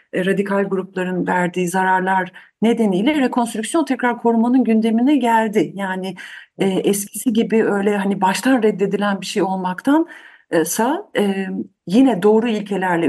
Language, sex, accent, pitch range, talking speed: Turkish, female, native, 190-235 Hz, 115 wpm